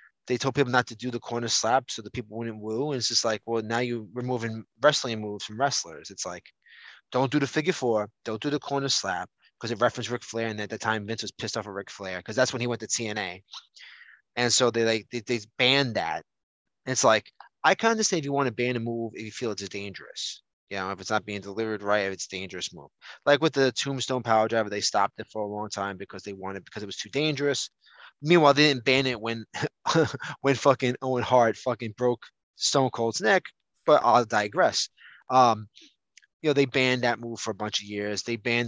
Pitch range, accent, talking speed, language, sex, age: 110-140 Hz, American, 235 wpm, English, male, 20-39